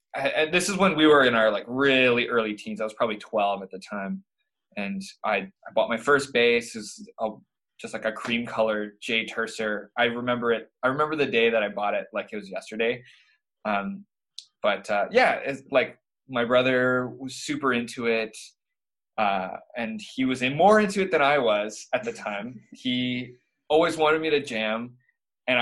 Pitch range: 115-160 Hz